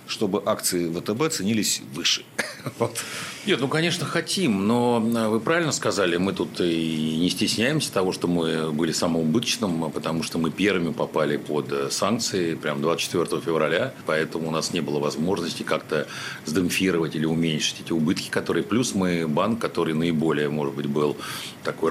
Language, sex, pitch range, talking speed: Russian, male, 80-110 Hz, 150 wpm